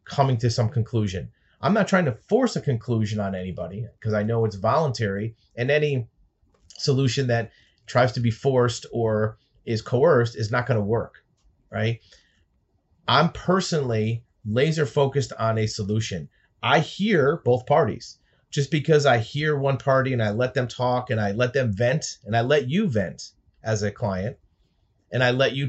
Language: English